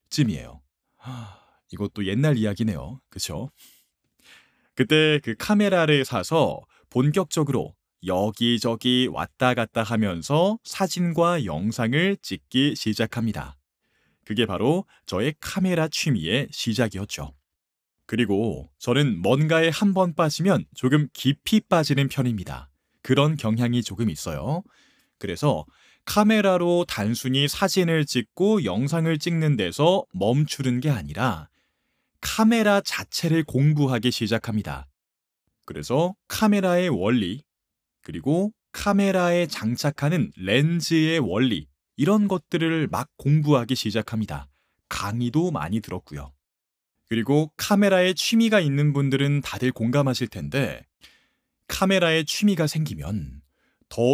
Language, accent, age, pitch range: Korean, native, 30-49, 110-165 Hz